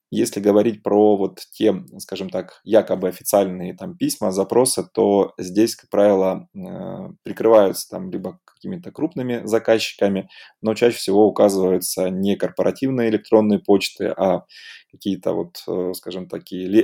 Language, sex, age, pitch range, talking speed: Russian, male, 20-39, 95-110 Hz, 125 wpm